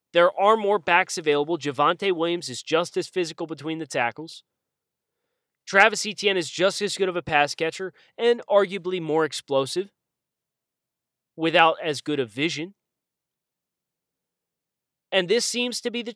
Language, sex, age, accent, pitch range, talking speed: English, male, 30-49, American, 150-200 Hz, 145 wpm